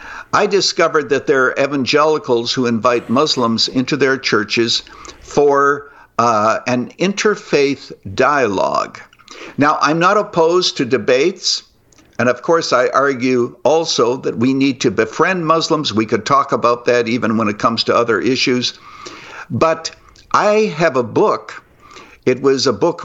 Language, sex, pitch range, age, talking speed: English, male, 125-160 Hz, 60-79, 145 wpm